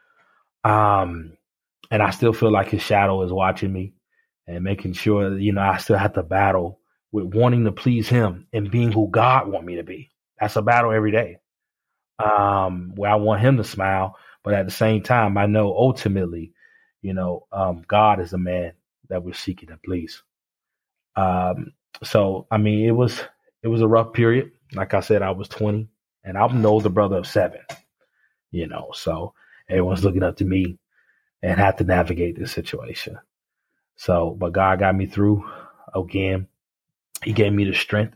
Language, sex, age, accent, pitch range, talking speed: English, male, 30-49, American, 95-110 Hz, 185 wpm